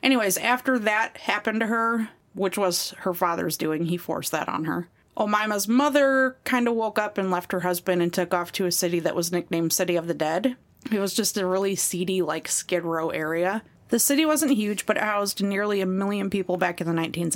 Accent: American